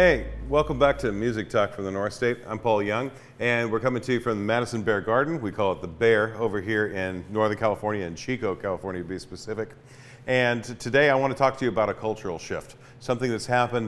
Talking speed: 230 wpm